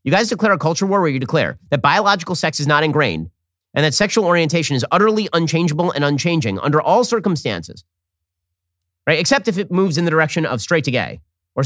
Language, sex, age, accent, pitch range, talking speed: English, male, 30-49, American, 105-170 Hz, 205 wpm